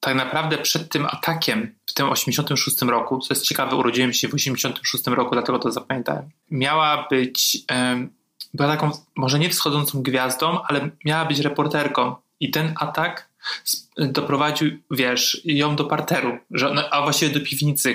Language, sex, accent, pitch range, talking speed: Polish, male, native, 125-150 Hz, 145 wpm